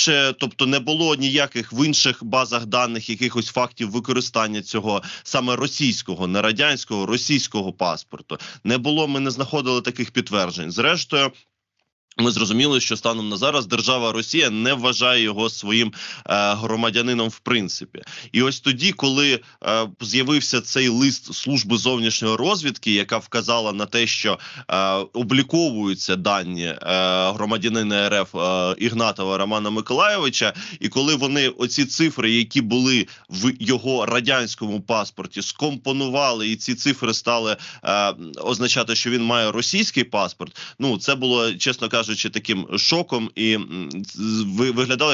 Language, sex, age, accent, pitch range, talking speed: Ukrainian, male, 20-39, native, 110-130 Hz, 125 wpm